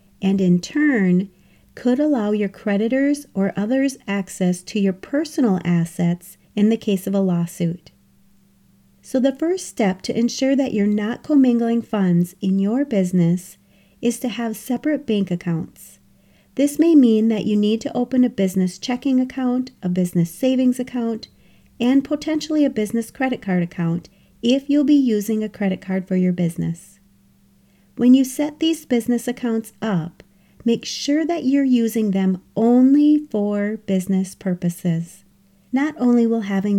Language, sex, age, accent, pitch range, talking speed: English, female, 40-59, American, 190-255 Hz, 155 wpm